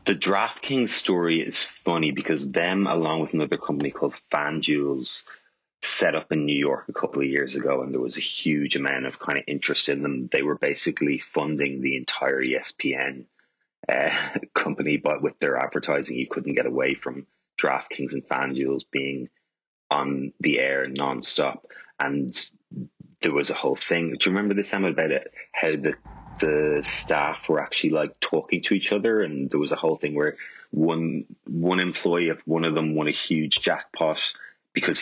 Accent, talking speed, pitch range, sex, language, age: Irish, 180 wpm, 70-85 Hz, male, English, 30-49